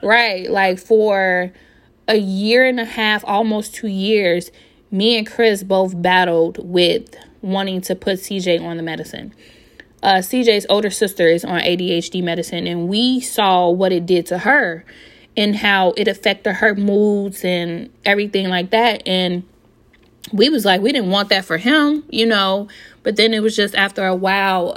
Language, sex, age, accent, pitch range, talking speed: English, female, 20-39, American, 185-215 Hz, 170 wpm